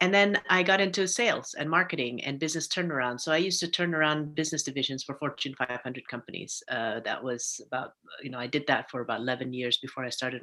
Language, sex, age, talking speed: English, female, 40-59, 225 wpm